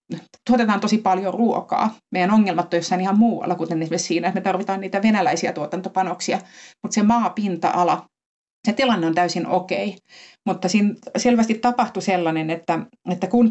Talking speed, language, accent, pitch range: 160 wpm, Finnish, native, 170-205 Hz